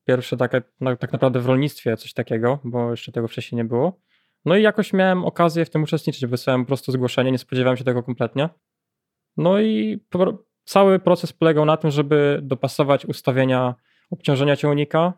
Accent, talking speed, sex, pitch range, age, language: native, 170 wpm, male, 130-165 Hz, 20-39, Polish